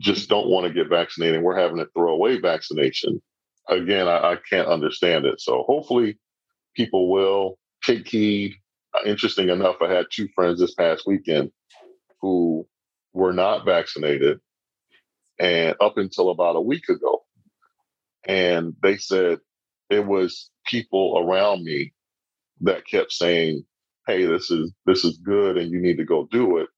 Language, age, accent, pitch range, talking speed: English, 40-59, American, 90-130 Hz, 150 wpm